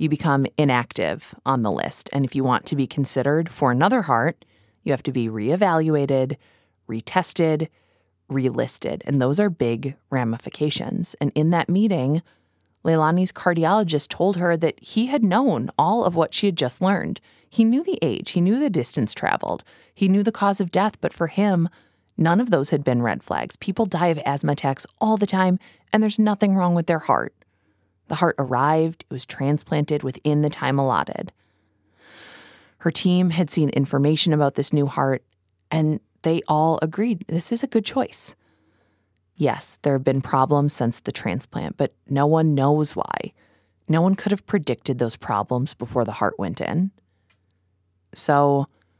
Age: 20-39